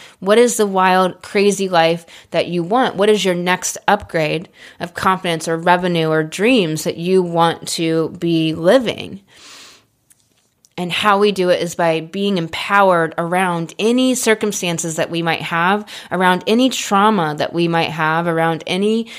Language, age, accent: English, 20-39, American